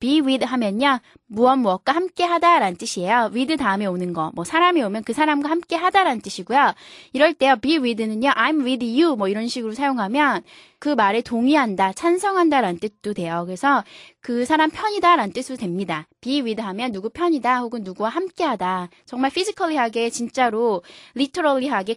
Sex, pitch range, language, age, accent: female, 210-300 Hz, Korean, 20-39, native